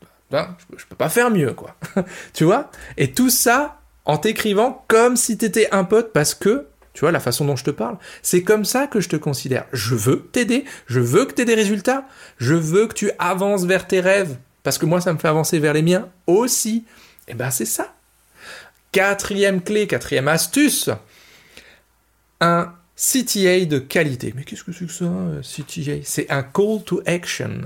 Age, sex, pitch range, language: 40-59, male, 150-215 Hz, French